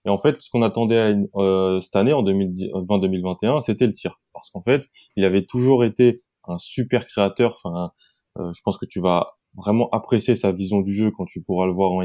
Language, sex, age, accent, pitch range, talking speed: French, male, 20-39, French, 95-120 Hz, 225 wpm